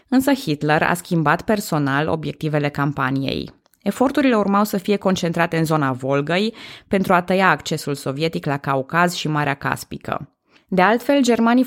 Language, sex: Romanian, female